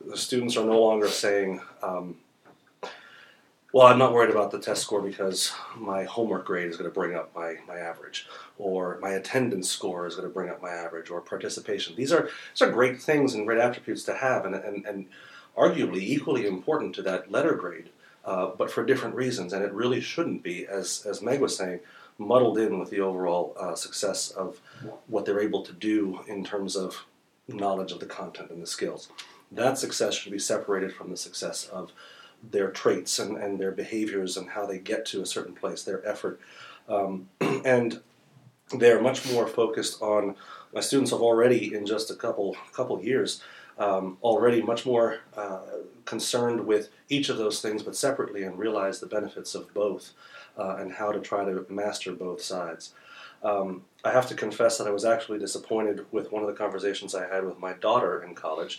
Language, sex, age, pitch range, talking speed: English, male, 40-59, 95-115 Hz, 195 wpm